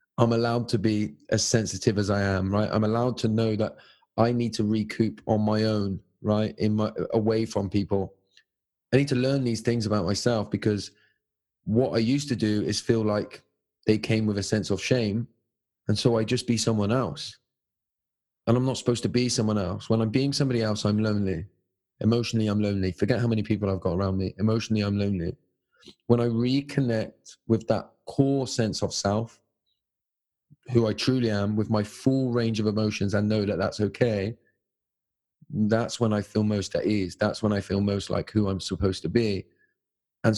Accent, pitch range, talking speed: British, 105-120 Hz, 195 wpm